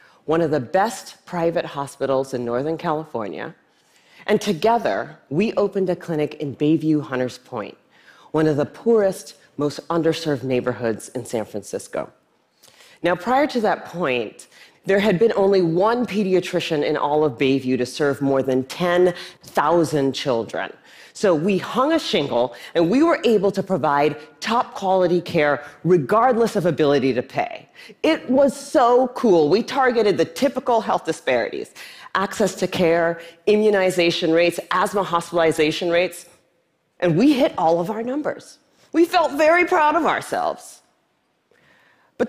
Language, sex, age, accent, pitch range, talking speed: English, female, 40-59, American, 155-225 Hz, 140 wpm